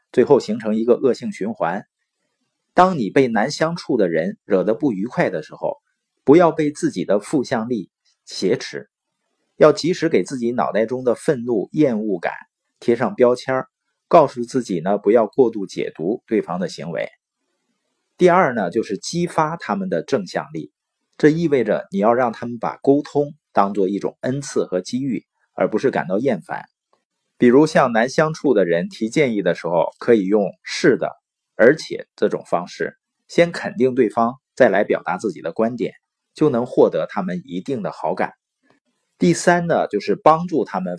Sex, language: male, Chinese